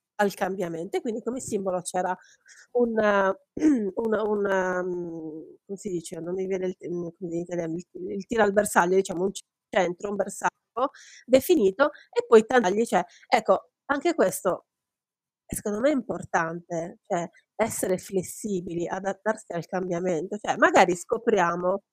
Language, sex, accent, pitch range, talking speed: Italian, female, native, 175-225 Hz, 130 wpm